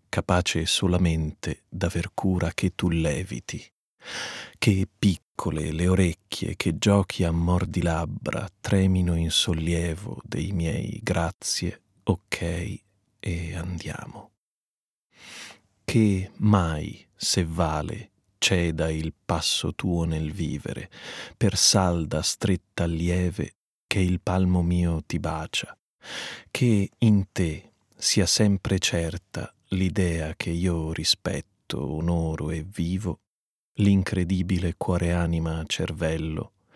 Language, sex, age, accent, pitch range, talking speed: Italian, male, 30-49, native, 85-95 Hz, 100 wpm